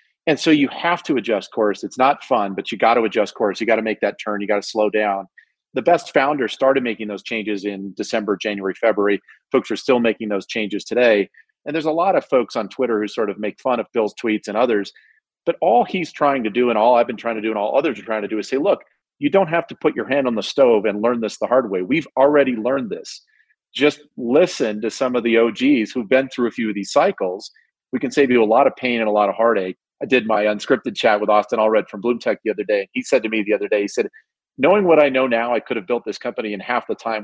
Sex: male